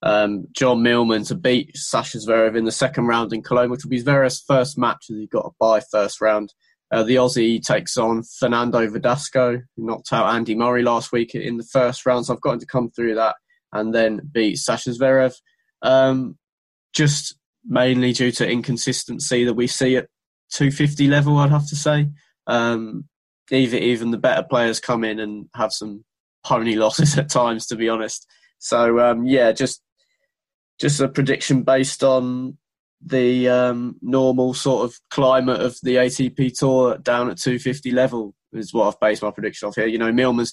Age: 20-39